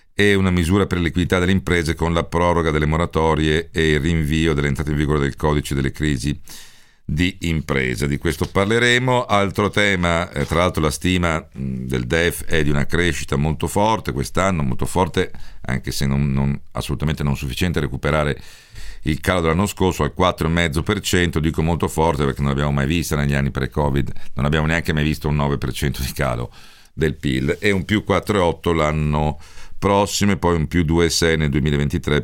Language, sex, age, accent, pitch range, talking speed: Italian, male, 50-69, native, 75-95 Hz, 175 wpm